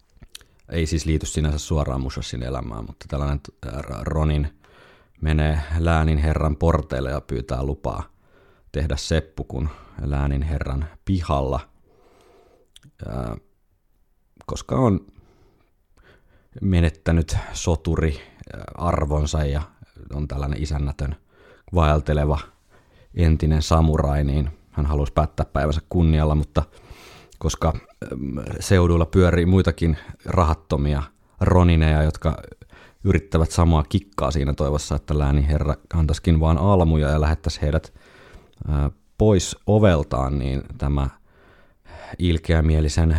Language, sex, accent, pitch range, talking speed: Finnish, male, native, 70-85 Hz, 95 wpm